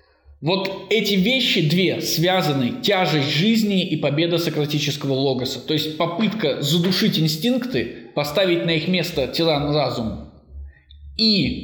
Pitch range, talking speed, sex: 145-190 Hz, 120 wpm, male